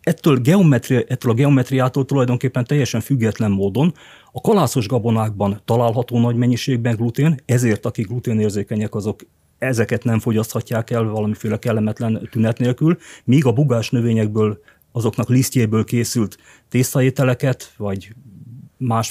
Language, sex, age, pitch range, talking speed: Hungarian, male, 40-59, 110-125 Hz, 120 wpm